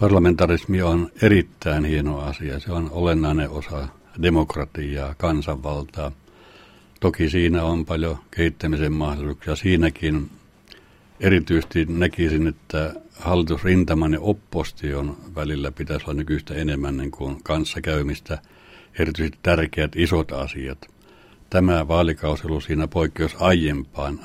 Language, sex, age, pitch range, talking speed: Finnish, male, 60-79, 75-85 Hz, 95 wpm